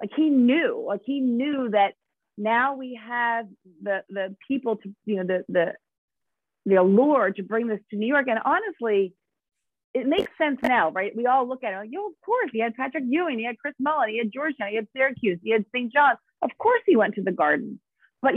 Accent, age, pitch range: American, 40-59, 205-260 Hz